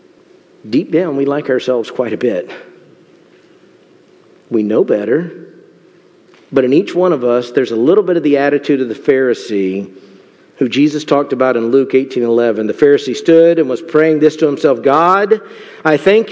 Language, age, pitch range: English, 50-69, 140-200 Hz